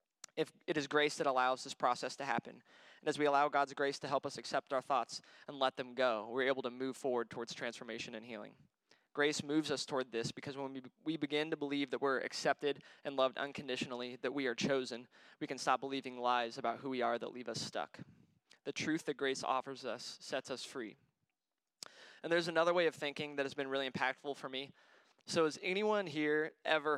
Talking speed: 215 wpm